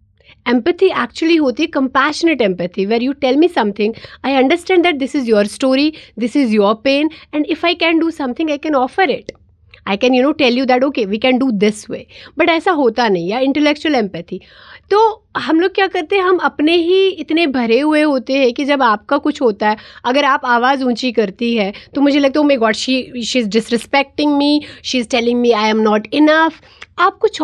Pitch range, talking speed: 220-305 Hz, 220 wpm